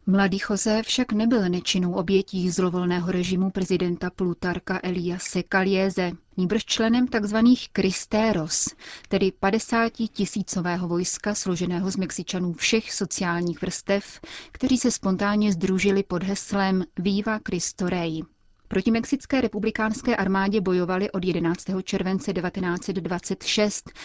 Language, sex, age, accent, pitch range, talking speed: Czech, female, 30-49, native, 180-205 Hz, 105 wpm